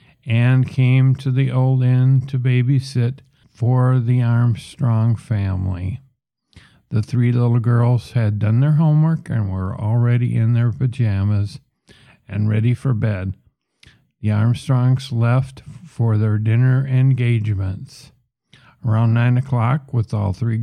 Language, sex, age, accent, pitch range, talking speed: English, male, 50-69, American, 115-130 Hz, 125 wpm